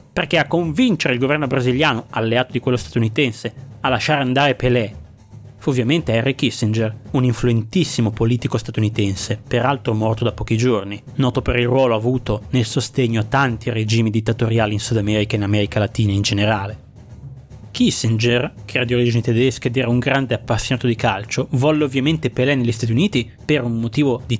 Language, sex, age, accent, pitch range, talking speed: Italian, male, 30-49, native, 115-145 Hz, 170 wpm